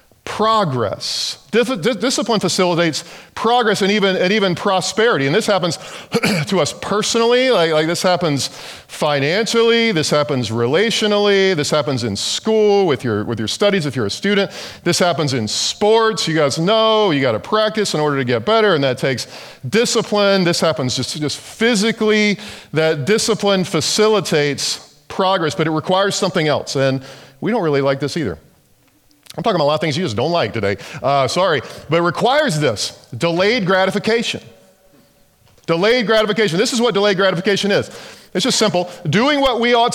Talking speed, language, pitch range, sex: 170 wpm, English, 145-210 Hz, male